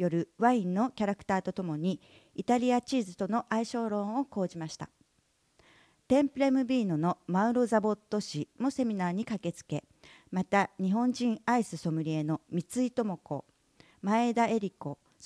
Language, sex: Japanese, female